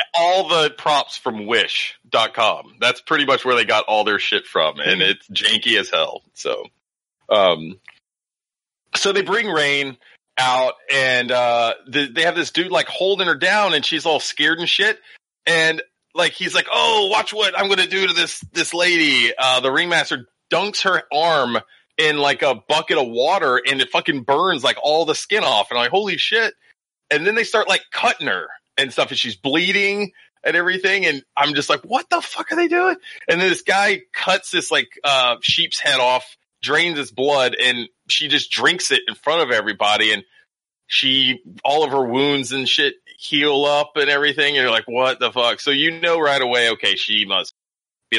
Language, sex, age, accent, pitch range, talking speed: English, male, 30-49, American, 125-200 Hz, 200 wpm